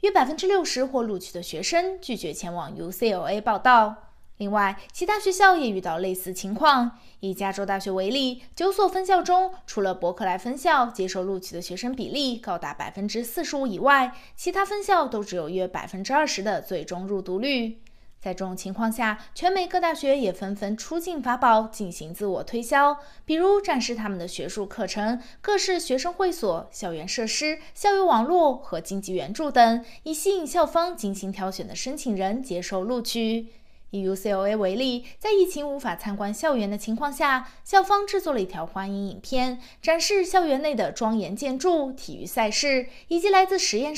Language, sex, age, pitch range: Chinese, female, 20-39, 195-310 Hz